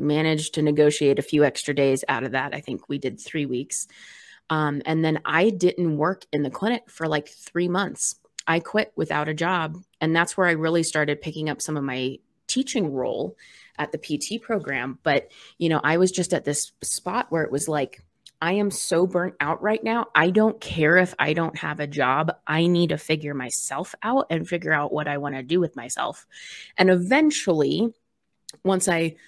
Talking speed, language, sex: 205 wpm, English, female